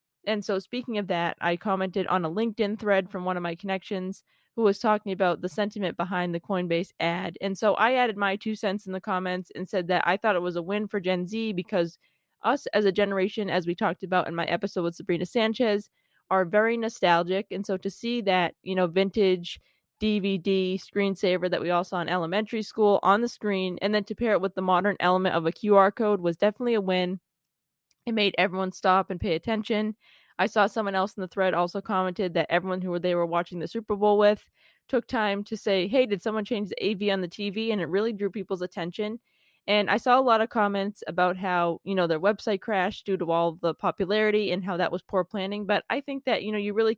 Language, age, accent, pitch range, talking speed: English, 20-39, American, 180-210 Hz, 230 wpm